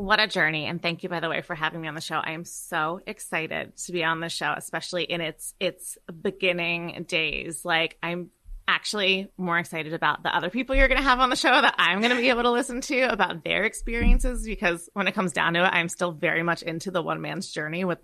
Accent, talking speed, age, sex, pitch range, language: American, 250 wpm, 20-39, female, 170-215 Hz, English